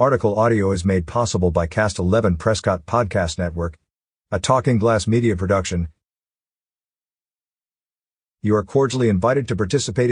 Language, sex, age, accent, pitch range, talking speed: English, male, 50-69, American, 95-120 Hz, 130 wpm